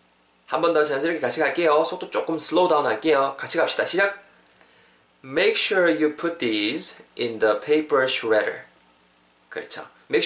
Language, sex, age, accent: Korean, male, 20-39, native